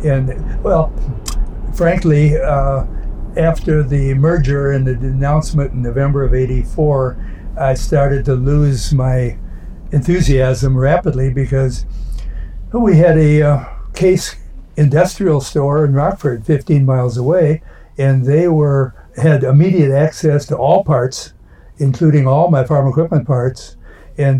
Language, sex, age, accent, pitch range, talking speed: English, male, 60-79, American, 130-150 Hz, 125 wpm